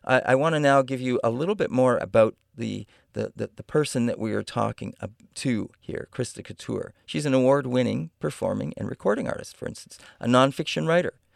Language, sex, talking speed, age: English, male, 195 wpm, 40-59